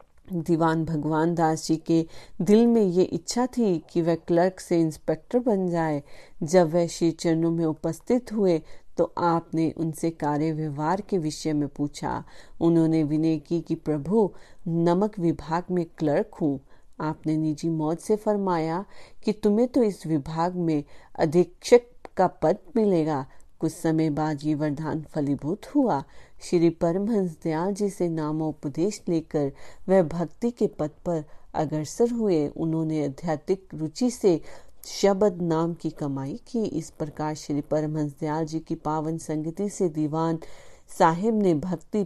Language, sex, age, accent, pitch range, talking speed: Hindi, female, 40-59, native, 155-180 Hz, 140 wpm